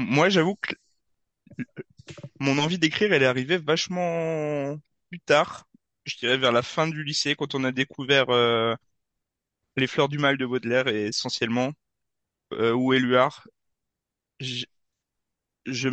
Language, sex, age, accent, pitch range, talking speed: French, male, 20-39, French, 120-145 Hz, 140 wpm